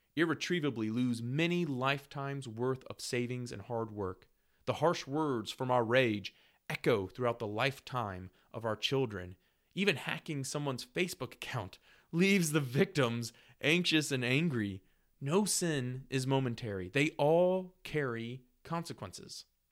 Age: 30-49